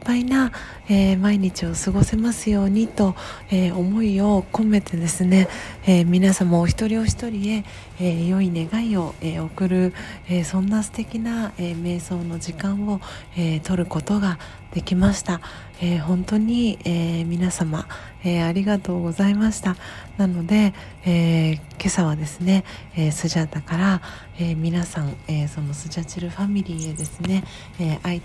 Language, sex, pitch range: Japanese, female, 165-200 Hz